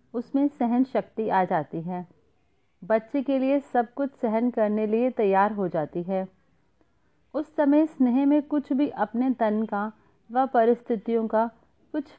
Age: 40-59